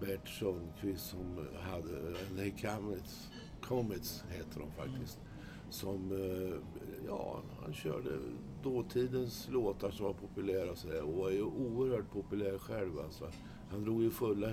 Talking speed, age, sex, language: 130 wpm, 60-79, male, Swedish